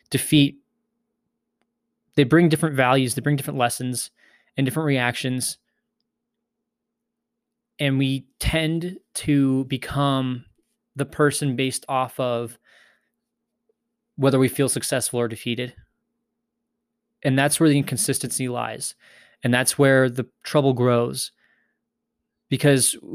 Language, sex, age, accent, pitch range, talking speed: English, male, 20-39, American, 125-215 Hz, 105 wpm